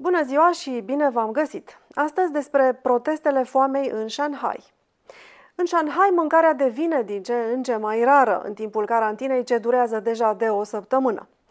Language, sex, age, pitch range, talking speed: Romanian, female, 30-49, 230-310 Hz, 160 wpm